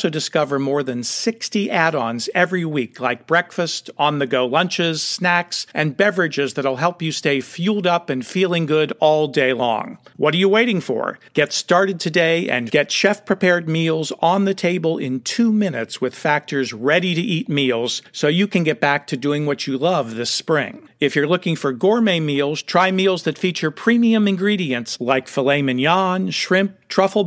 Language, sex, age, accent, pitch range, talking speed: English, male, 50-69, American, 145-190 Hz, 170 wpm